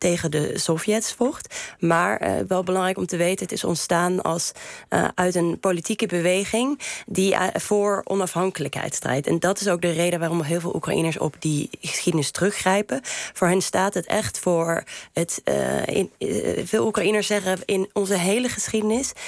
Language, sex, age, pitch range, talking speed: Dutch, female, 20-39, 170-200 Hz, 175 wpm